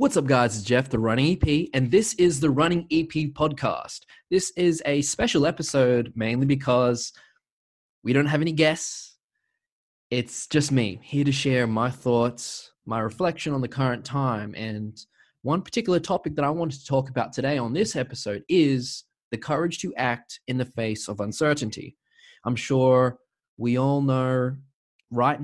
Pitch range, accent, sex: 115-145 Hz, Australian, male